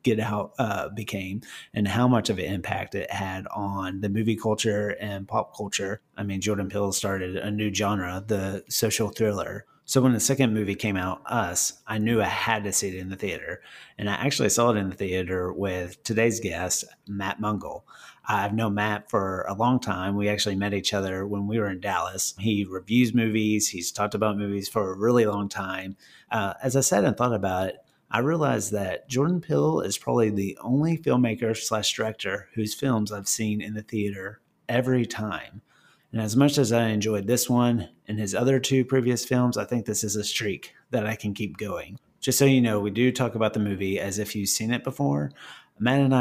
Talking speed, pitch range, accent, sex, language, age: 210 wpm, 100-125 Hz, American, male, English, 30-49